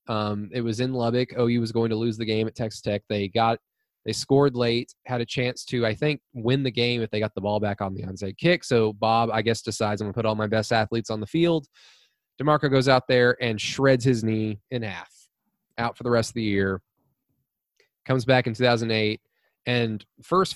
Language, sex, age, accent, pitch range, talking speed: English, male, 20-39, American, 110-185 Hz, 230 wpm